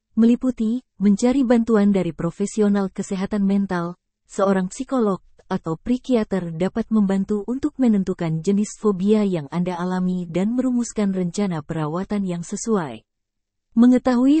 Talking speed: 110 wpm